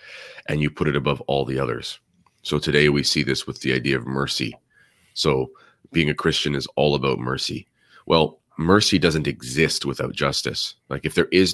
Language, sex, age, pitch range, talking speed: English, male, 30-49, 65-80 Hz, 185 wpm